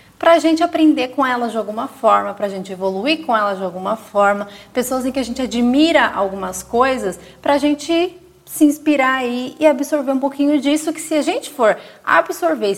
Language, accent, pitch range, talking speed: Portuguese, Brazilian, 205-265 Hz, 190 wpm